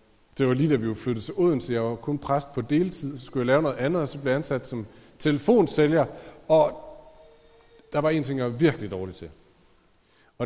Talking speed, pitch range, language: 225 wpm, 130-175 Hz, Danish